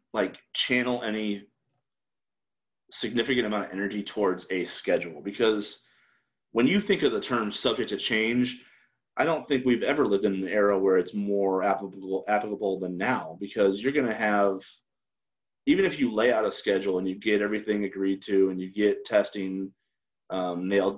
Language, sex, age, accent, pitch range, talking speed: English, male, 30-49, American, 100-125 Hz, 170 wpm